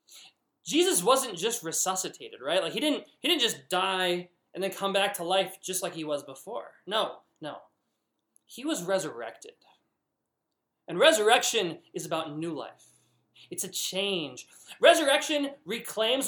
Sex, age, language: male, 20-39, English